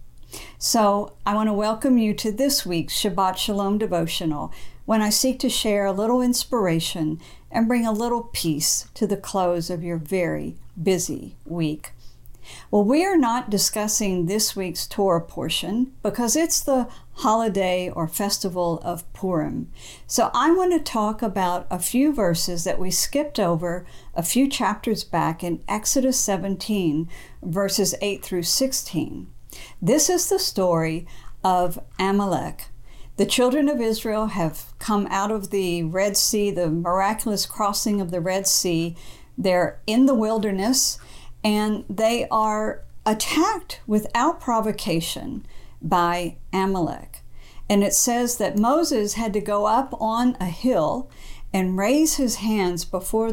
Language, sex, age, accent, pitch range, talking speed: English, female, 50-69, American, 175-225 Hz, 145 wpm